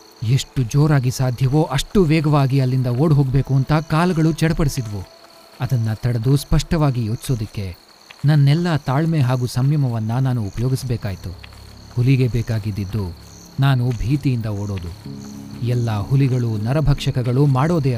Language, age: Kannada, 40-59